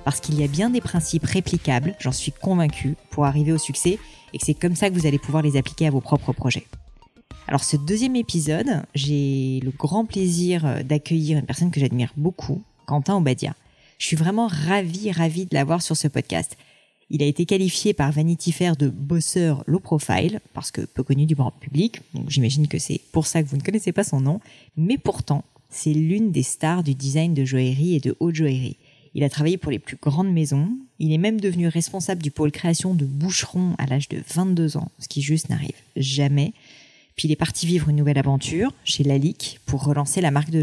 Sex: female